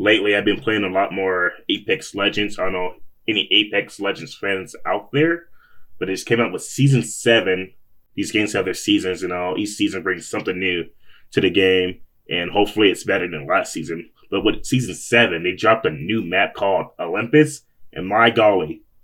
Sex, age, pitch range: male, 20-39, 95-125 Hz